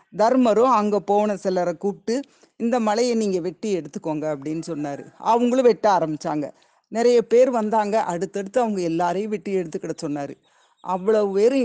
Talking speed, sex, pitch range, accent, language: 135 wpm, female, 175-230 Hz, native, Tamil